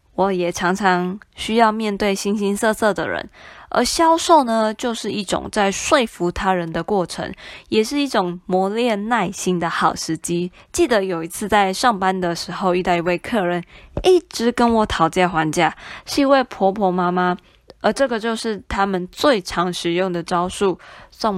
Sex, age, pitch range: female, 20-39, 180-230 Hz